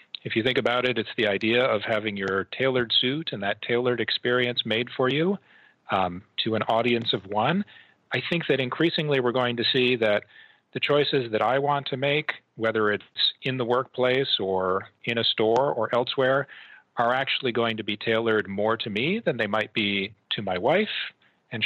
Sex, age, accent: male, 40-59, American